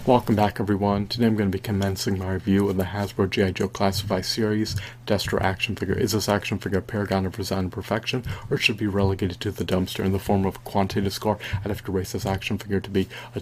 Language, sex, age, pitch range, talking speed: English, male, 40-59, 95-110 Hz, 245 wpm